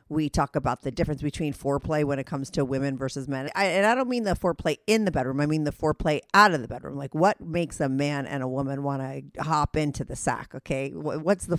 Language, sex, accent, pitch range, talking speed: English, female, American, 140-195 Hz, 250 wpm